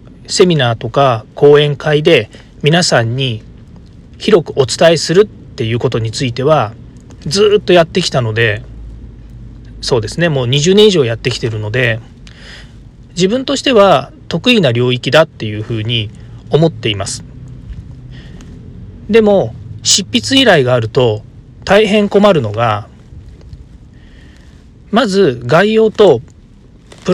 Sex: male